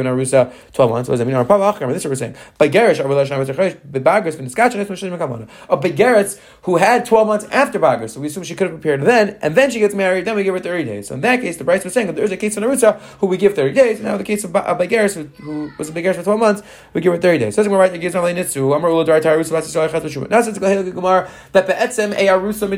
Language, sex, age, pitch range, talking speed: English, male, 30-49, 150-200 Hz, 185 wpm